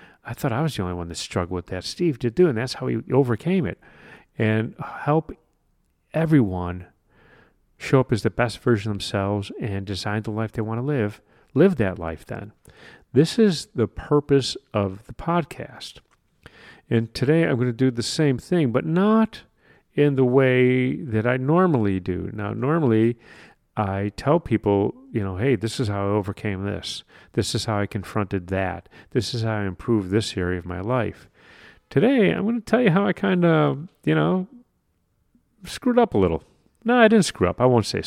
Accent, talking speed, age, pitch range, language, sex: American, 190 wpm, 40-59, 105-150 Hz, English, male